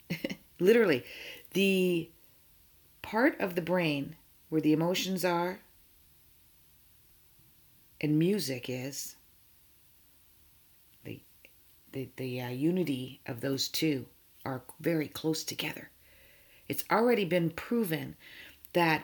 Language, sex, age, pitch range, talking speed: English, female, 50-69, 135-185 Hz, 95 wpm